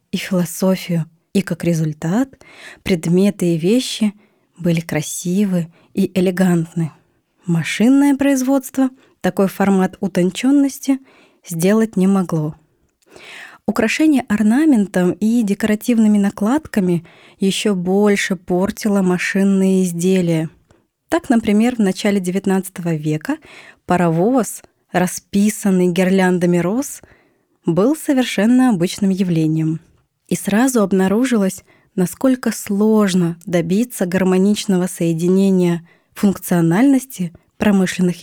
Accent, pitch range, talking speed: native, 180-235 Hz, 85 wpm